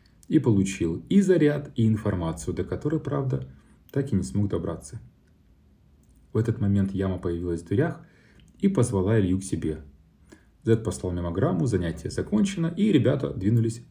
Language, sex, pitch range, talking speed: Russian, male, 90-120 Hz, 145 wpm